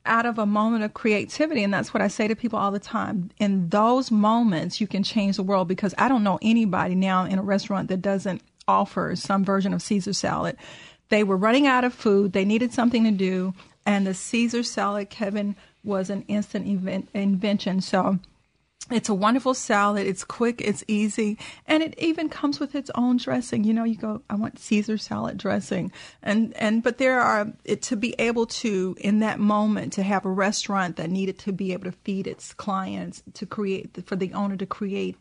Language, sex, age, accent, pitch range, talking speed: English, female, 40-59, American, 190-220 Hz, 205 wpm